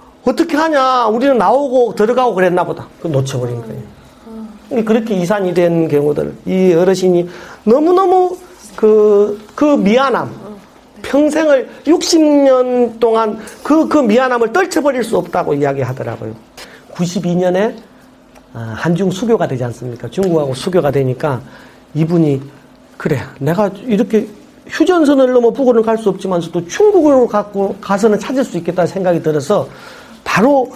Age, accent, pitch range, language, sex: 40-59, native, 145-225 Hz, Korean, male